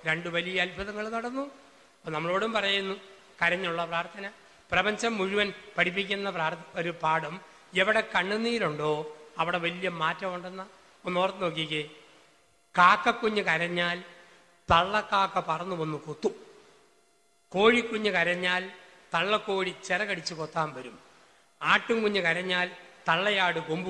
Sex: male